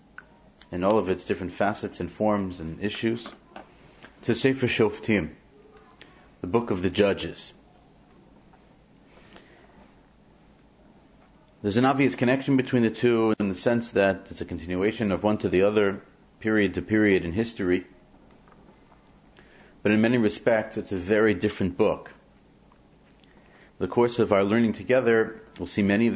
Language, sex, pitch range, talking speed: English, male, 95-115 Hz, 145 wpm